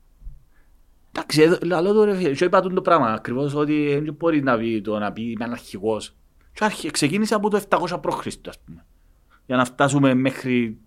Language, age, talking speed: Greek, 30-49, 150 wpm